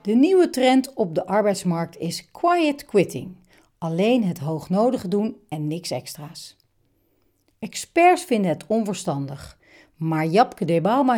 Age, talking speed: 60-79, 125 wpm